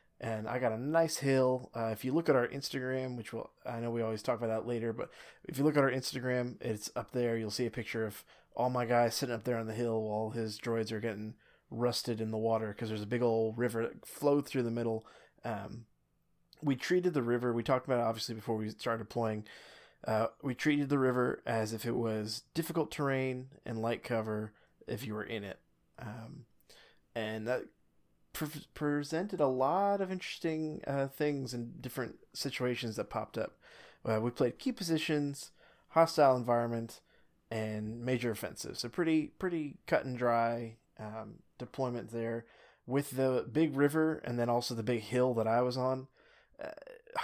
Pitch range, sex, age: 115-135 Hz, male, 20-39